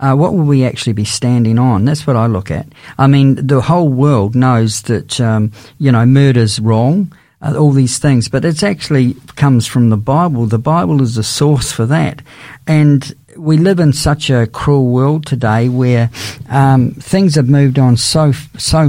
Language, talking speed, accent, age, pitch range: English, 190 wpm, Australian, 50-69, 125-150 Hz